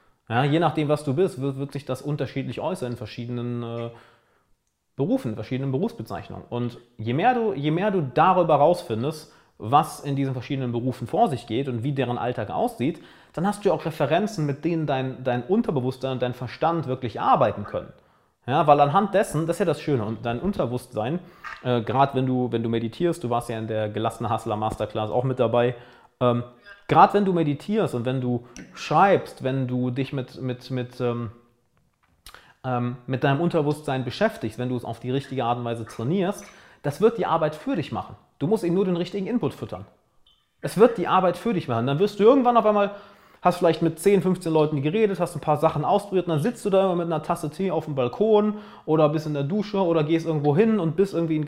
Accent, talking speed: German, 215 wpm